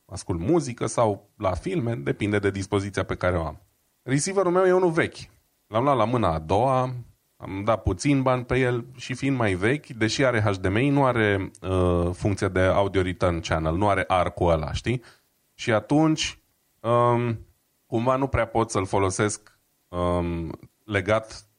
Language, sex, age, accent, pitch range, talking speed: Romanian, male, 20-39, native, 100-135 Hz, 160 wpm